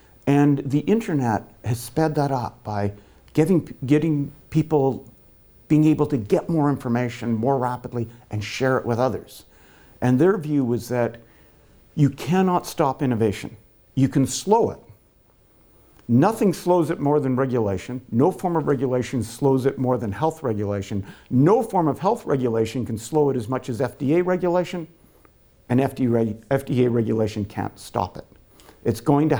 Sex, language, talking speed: male, English, 155 wpm